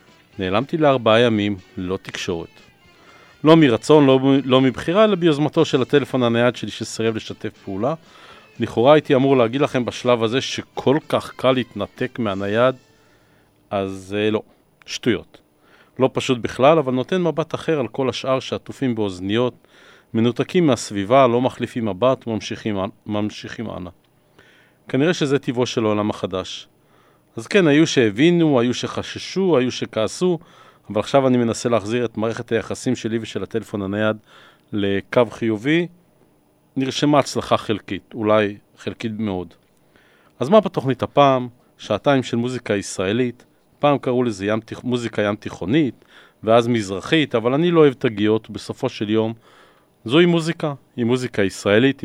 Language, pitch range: Hebrew, 105-135 Hz